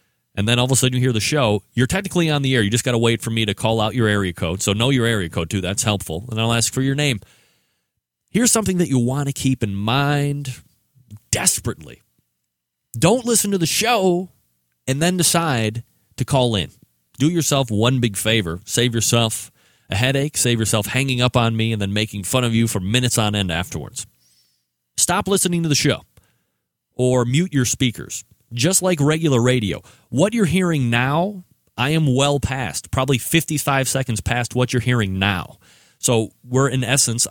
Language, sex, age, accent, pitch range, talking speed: English, male, 30-49, American, 105-135 Hz, 195 wpm